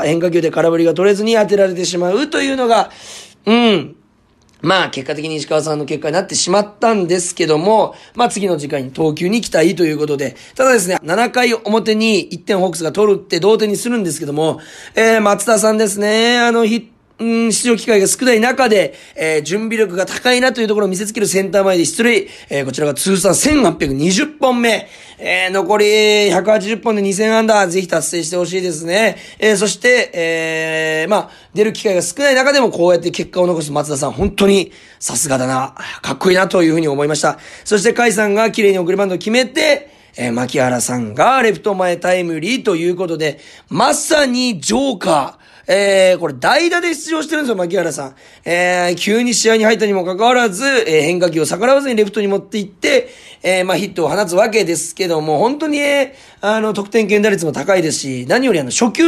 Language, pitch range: Japanese, 165-230 Hz